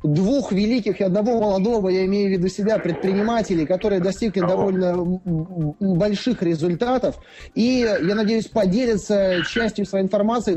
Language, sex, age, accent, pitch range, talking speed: Russian, male, 20-39, native, 190-235 Hz, 130 wpm